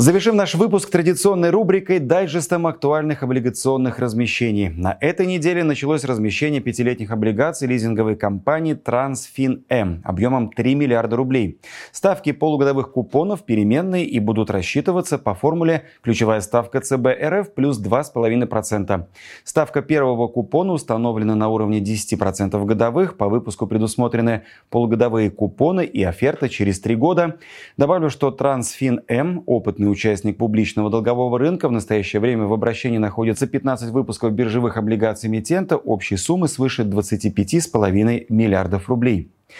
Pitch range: 110-150 Hz